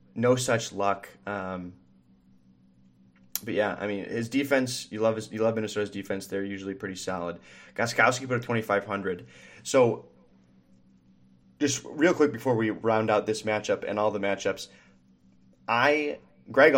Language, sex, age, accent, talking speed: English, male, 20-39, American, 155 wpm